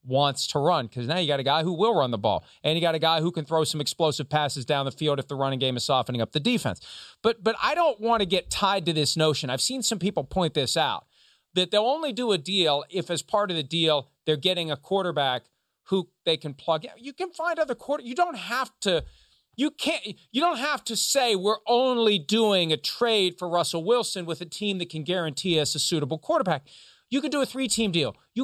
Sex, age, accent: male, 40-59, American